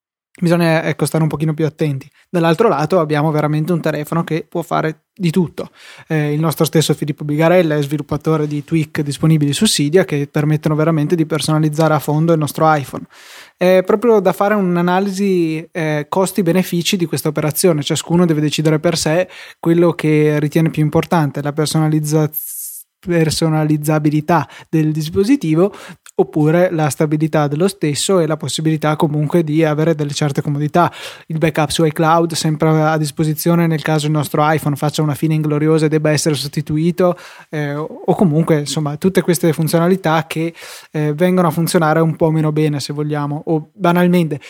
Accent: native